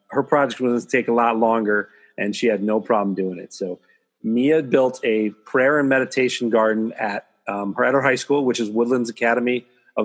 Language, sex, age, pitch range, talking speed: English, male, 30-49, 105-125 Hz, 215 wpm